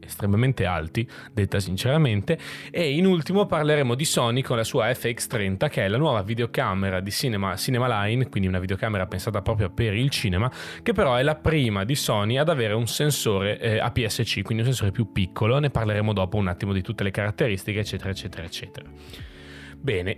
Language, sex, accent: Italian, male, native